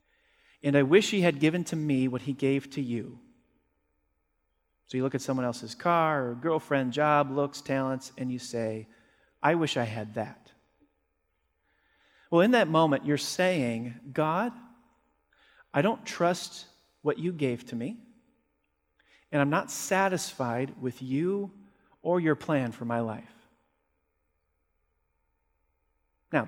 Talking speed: 140 wpm